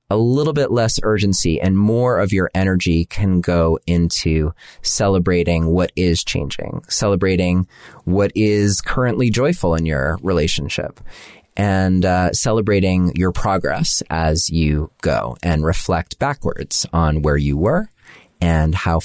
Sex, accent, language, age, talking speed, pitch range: male, American, English, 30-49, 130 wpm, 85-120 Hz